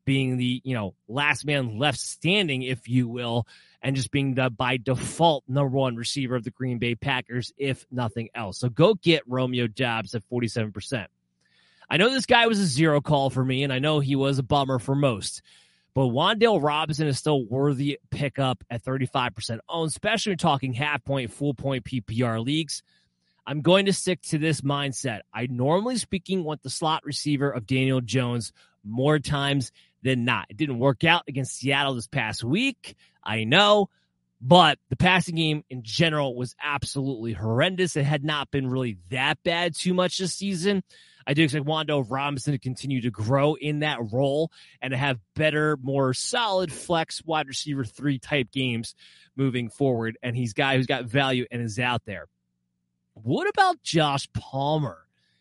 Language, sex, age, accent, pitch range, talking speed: English, male, 30-49, American, 125-155 Hz, 180 wpm